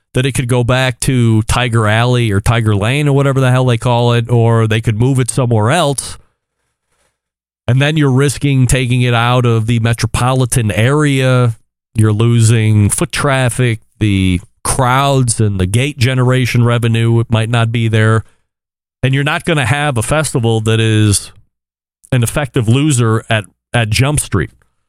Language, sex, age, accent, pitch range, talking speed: English, male, 40-59, American, 110-130 Hz, 165 wpm